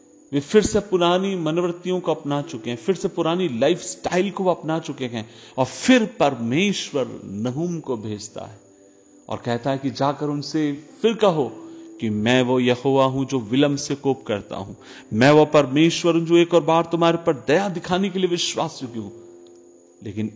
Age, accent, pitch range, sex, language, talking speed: 40-59, native, 115-170 Hz, male, Hindi, 175 wpm